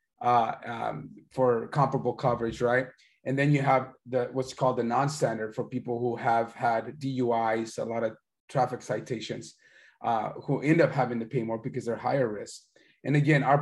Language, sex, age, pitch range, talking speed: English, male, 30-49, 120-140 Hz, 180 wpm